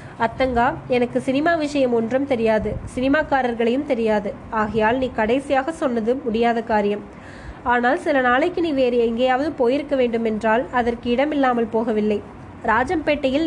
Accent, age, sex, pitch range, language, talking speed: native, 20-39, female, 230-275 Hz, Tamil, 115 wpm